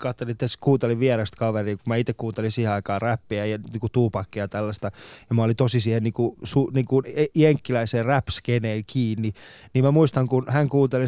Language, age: Finnish, 20-39